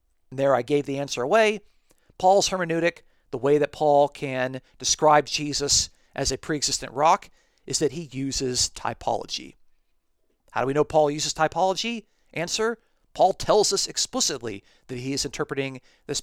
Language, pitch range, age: English, 130-165 Hz, 40-59